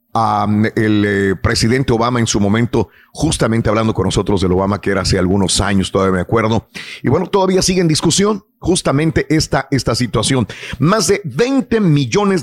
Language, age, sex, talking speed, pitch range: Spanish, 50-69, male, 175 wpm, 115-160 Hz